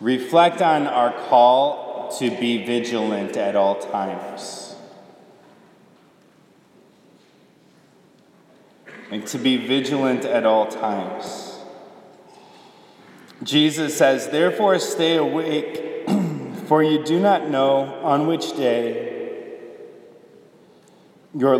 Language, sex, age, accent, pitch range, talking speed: English, male, 30-49, American, 125-190 Hz, 85 wpm